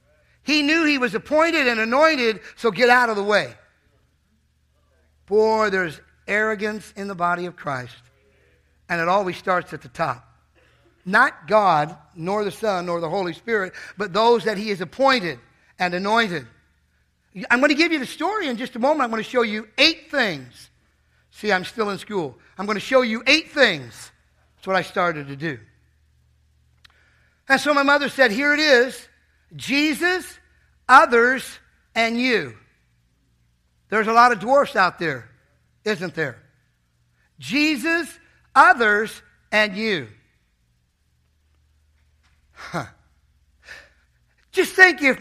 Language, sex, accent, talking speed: English, male, American, 145 wpm